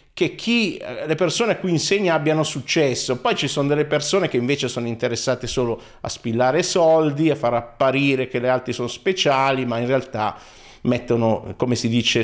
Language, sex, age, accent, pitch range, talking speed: Italian, male, 50-69, native, 115-160 Hz, 180 wpm